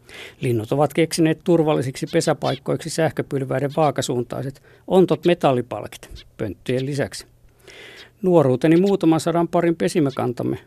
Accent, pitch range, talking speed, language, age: native, 120-165 Hz, 90 wpm, Finnish, 50-69